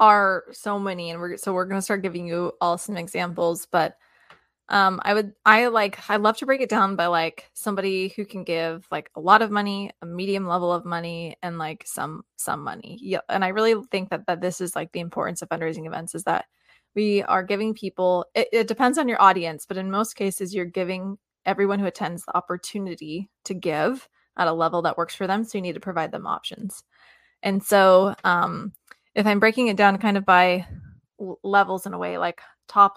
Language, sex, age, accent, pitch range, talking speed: English, female, 20-39, American, 175-205 Hz, 215 wpm